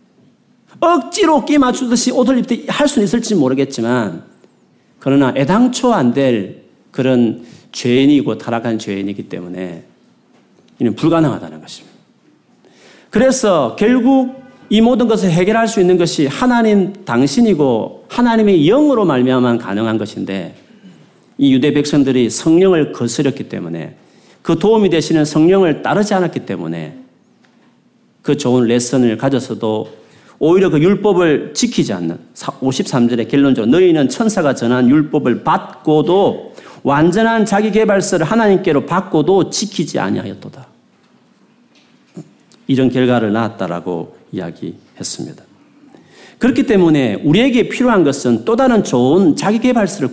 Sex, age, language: male, 40-59, Korean